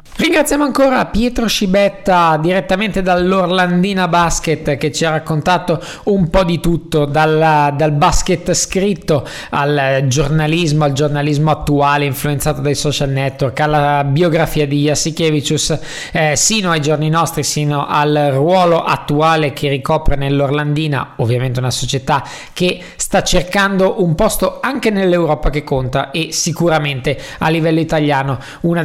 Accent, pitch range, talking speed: native, 145-175 Hz, 130 wpm